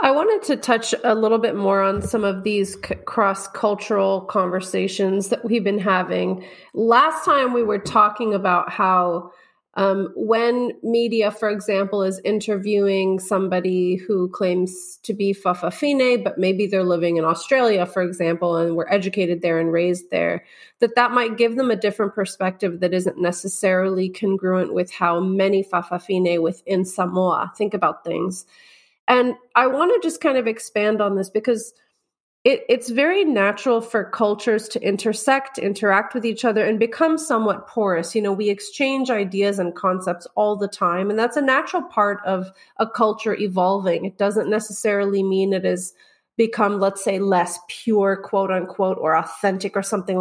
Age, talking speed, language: 30-49, 165 wpm, English